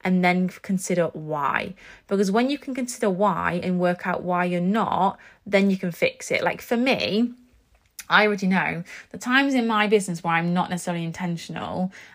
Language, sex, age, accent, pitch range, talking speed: English, female, 20-39, British, 170-200 Hz, 185 wpm